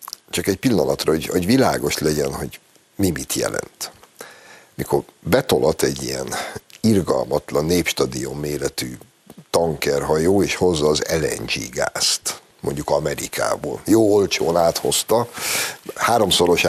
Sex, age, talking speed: male, 60-79, 110 wpm